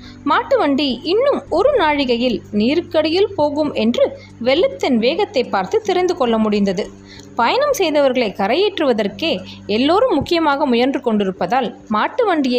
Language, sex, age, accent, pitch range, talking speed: Tamil, female, 20-39, native, 225-350 Hz, 100 wpm